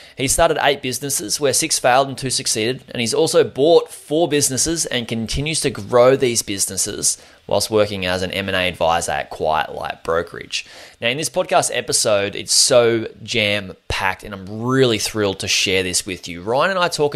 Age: 20-39